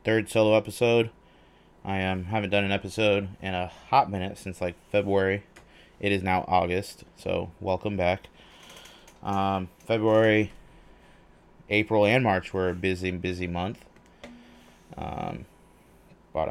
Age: 20-39